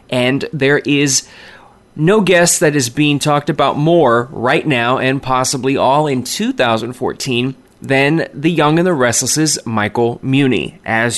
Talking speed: 145 wpm